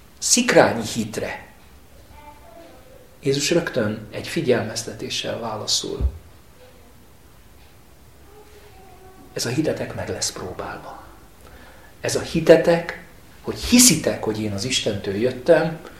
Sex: male